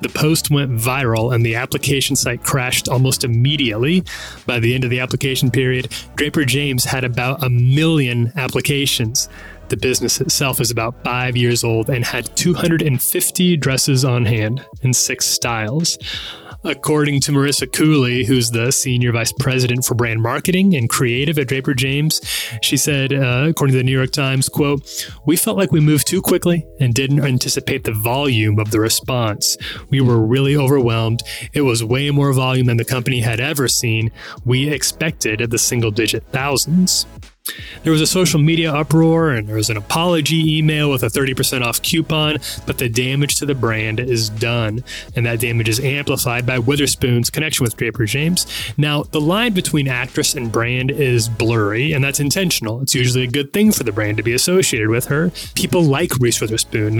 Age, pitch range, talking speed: 30-49, 120-145 Hz, 180 wpm